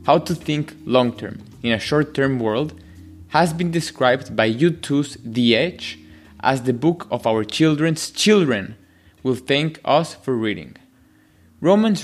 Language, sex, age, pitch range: English, male, 20-39, 120-170 Hz